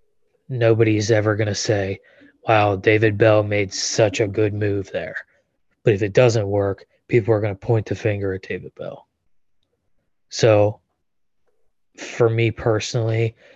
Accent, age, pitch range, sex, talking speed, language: American, 20-39, 105-125 Hz, male, 145 wpm, English